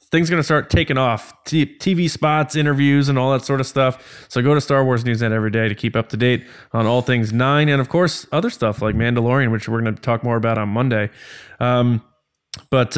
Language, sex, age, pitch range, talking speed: English, male, 20-39, 115-135 Hz, 240 wpm